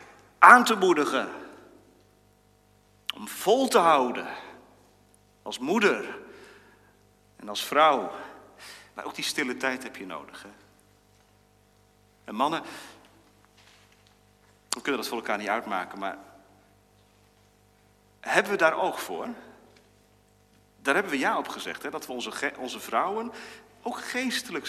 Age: 40-59